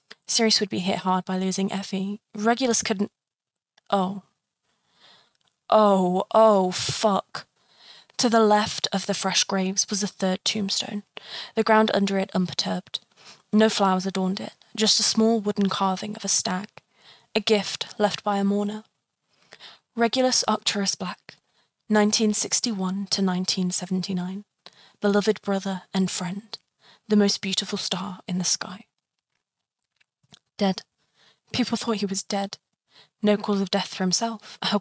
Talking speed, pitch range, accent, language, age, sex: 135 wpm, 190-220 Hz, British, English, 20-39, female